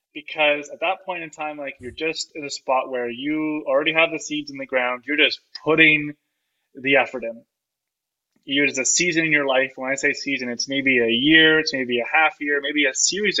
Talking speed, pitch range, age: 225 wpm, 125-150 Hz, 20-39